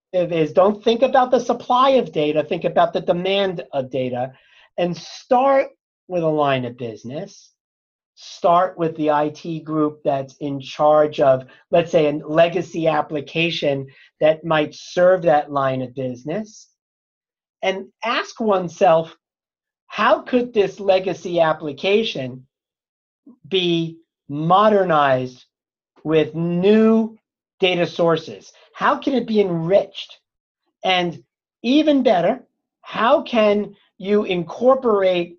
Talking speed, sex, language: 115 wpm, male, English